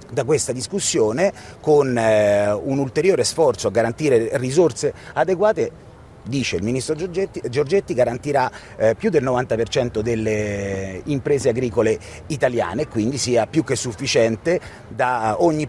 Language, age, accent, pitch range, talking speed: Italian, 30-49, native, 170-220 Hz, 120 wpm